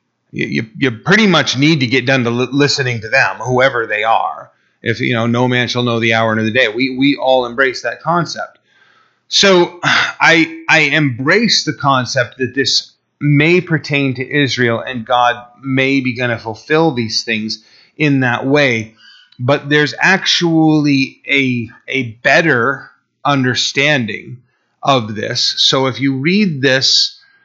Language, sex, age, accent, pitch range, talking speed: English, male, 30-49, American, 125-150 Hz, 155 wpm